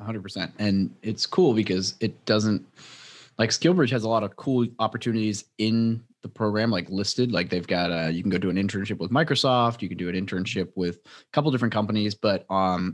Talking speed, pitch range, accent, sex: 215 wpm, 95-115 Hz, American, male